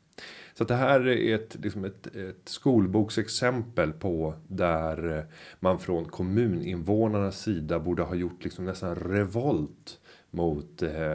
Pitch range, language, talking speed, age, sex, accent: 85-110 Hz, Swedish, 100 wpm, 30-49, male, native